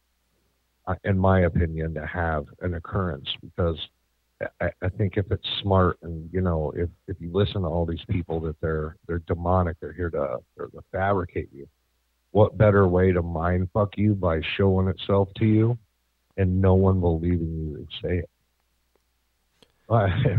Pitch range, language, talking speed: 75-95 Hz, English, 165 wpm